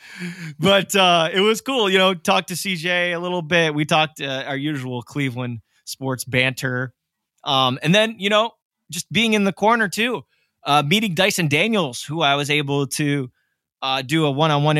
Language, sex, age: English, male, 20-39